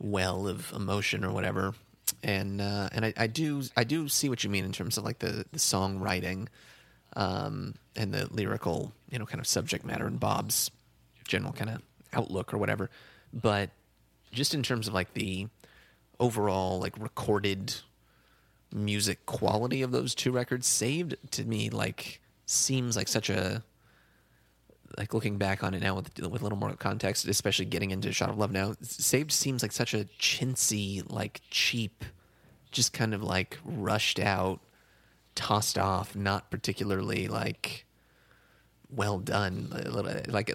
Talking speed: 160 wpm